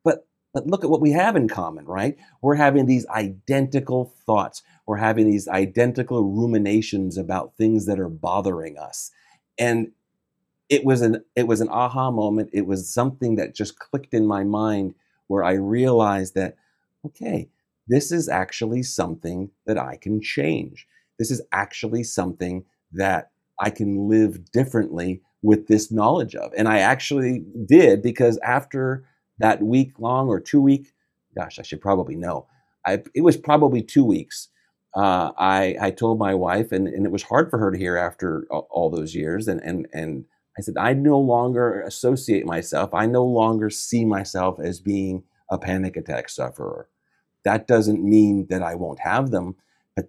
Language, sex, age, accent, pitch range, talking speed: English, male, 40-59, American, 95-120 Hz, 165 wpm